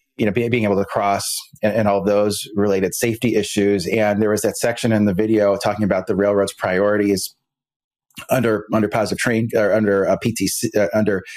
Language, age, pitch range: English, 30-49, 105-125 Hz